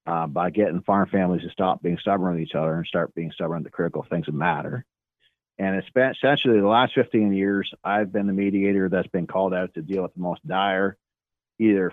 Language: English